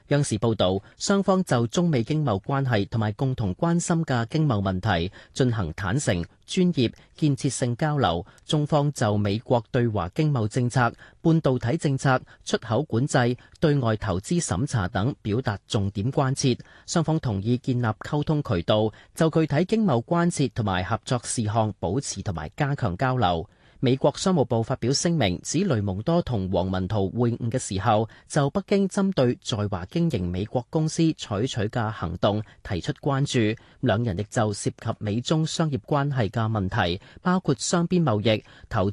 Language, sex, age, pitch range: Chinese, male, 30-49, 105-145 Hz